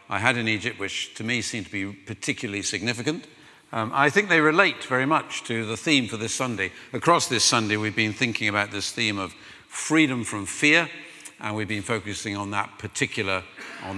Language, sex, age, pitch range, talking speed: English, male, 50-69, 100-130 Hz, 200 wpm